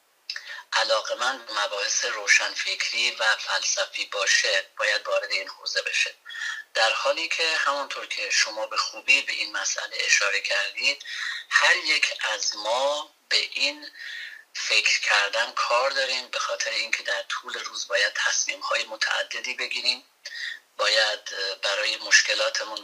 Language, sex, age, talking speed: Persian, male, 40-59, 130 wpm